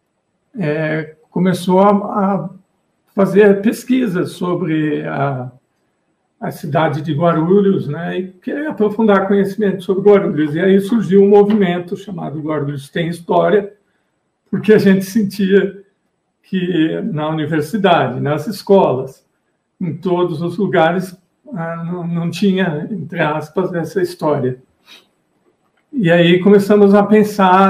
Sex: male